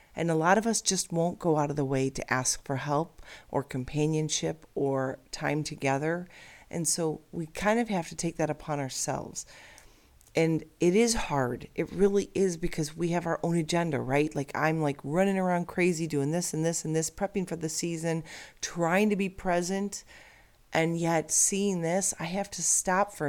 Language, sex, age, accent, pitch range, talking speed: English, female, 40-59, American, 140-175 Hz, 195 wpm